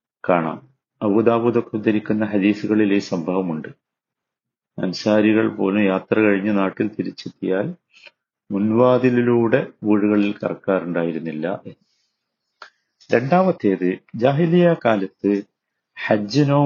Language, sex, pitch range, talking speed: Malayalam, male, 100-135 Hz, 65 wpm